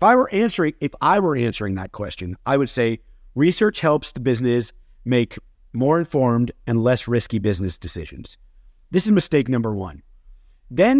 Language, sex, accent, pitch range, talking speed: English, male, American, 105-145 Hz, 145 wpm